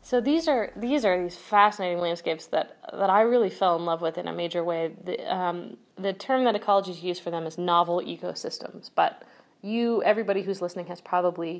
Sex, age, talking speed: female, 30-49, 200 wpm